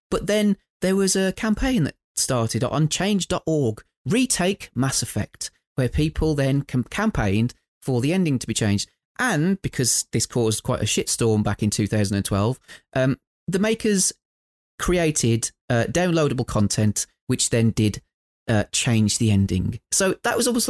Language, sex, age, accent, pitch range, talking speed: English, male, 30-49, British, 115-175 Hz, 150 wpm